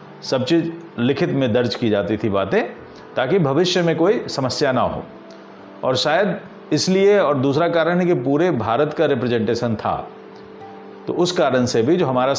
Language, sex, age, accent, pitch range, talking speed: Hindi, male, 40-59, native, 115-170 Hz, 175 wpm